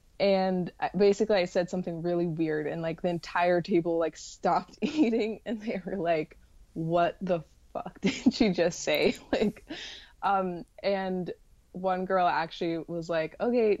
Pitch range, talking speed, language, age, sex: 170-190 Hz, 150 wpm, English, 20-39, female